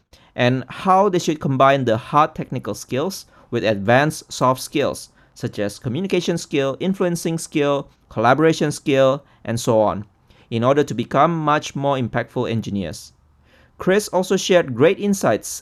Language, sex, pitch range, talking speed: English, male, 110-150 Hz, 140 wpm